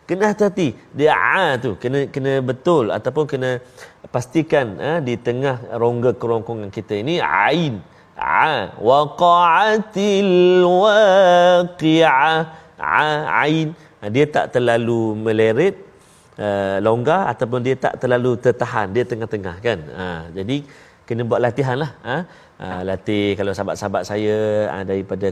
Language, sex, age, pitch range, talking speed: Malayalam, male, 30-49, 100-150 Hz, 120 wpm